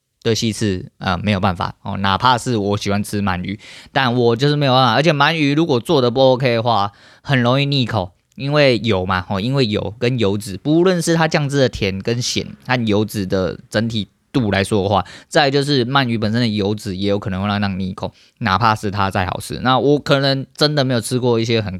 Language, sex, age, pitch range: Chinese, male, 20-39, 100-125 Hz